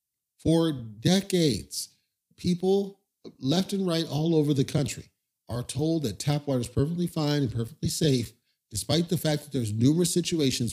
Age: 50-69